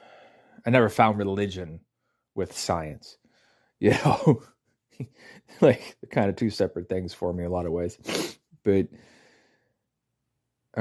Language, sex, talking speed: English, male, 120 wpm